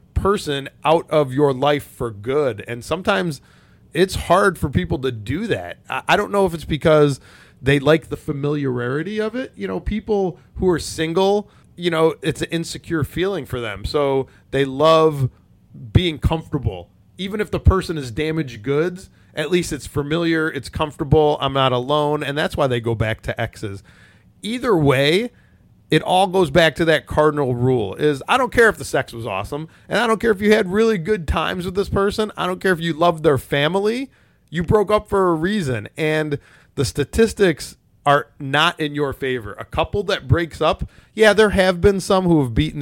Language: English